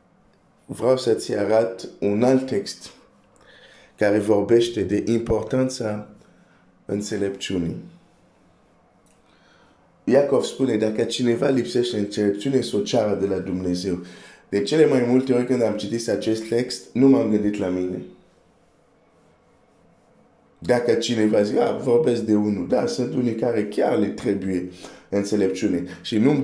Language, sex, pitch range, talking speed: Romanian, male, 100-125 Hz, 120 wpm